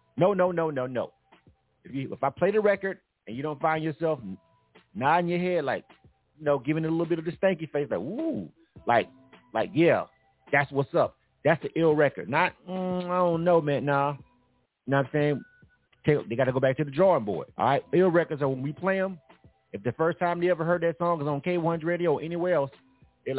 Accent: American